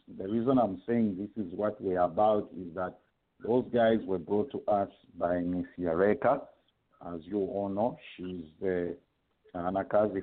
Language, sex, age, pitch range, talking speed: English, male, 50-69, 105-140 Hz, 160 wpm